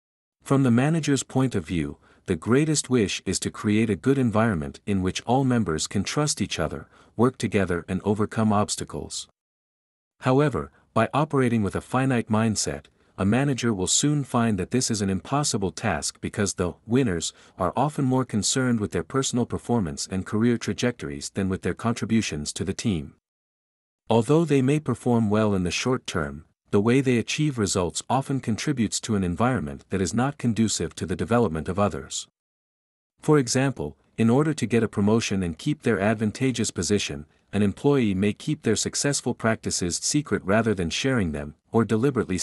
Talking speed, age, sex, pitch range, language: 175 wpm, 50-69, male, 95-125 Hz, German